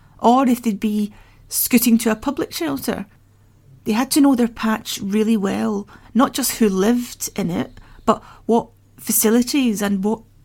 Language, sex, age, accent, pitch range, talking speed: English, female, 30-49, British, 205-265 Hz, 160 wpm